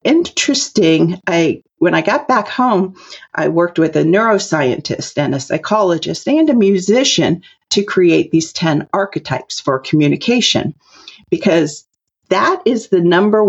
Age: 50-69